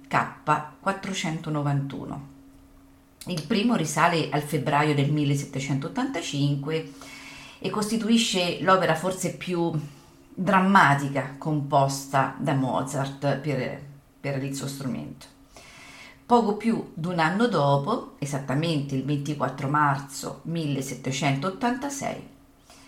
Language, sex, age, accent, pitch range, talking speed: Italian, female, 40-59, native, 140-190 Hz, 85 wpm